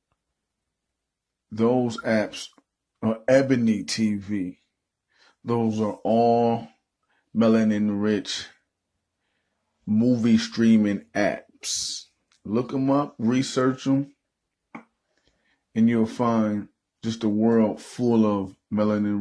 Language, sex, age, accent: English, male, 30-49, American